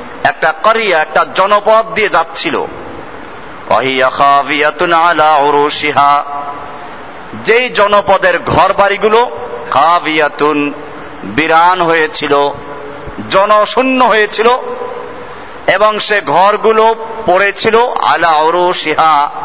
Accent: native